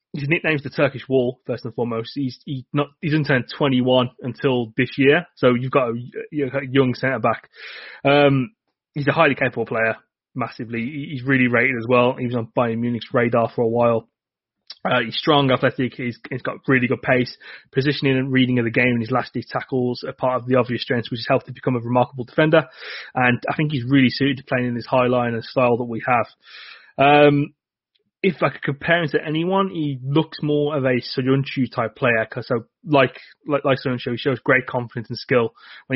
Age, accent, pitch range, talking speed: 20-39, British, 125-145 Hz, 210 wpm